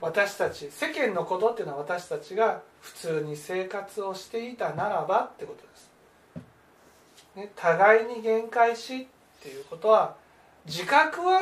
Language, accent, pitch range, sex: Japanese, native, 195-290 Hz, male